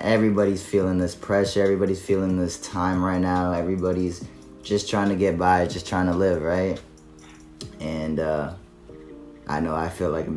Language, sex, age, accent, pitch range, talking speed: English, male, 20-39, American, 80-100 Hz, 170 wpm